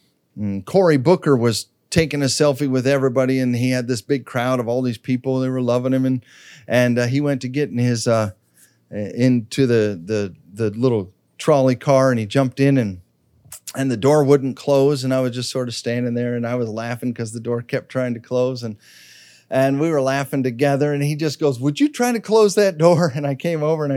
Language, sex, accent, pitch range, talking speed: English, male, American, 125-175 Hz, 225 wpm